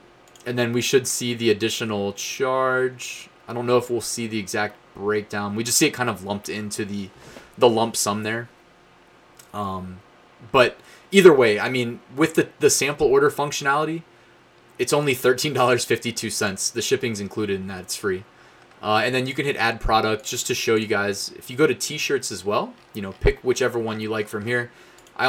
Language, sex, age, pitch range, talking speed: English, male, 20-39, 110-130 Hz, 195 wpm